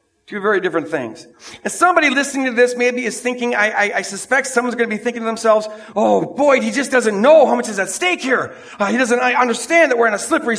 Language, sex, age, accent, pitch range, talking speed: English, male, 50-69, American, 235-310 Hz, 250 wpm